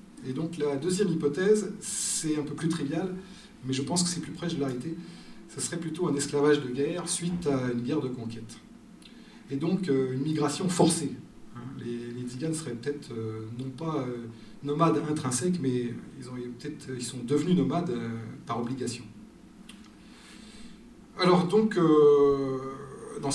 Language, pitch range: French, 120-160 Hz